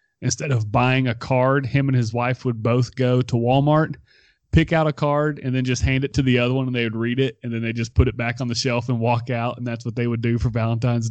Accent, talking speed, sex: American, 285 wpm, male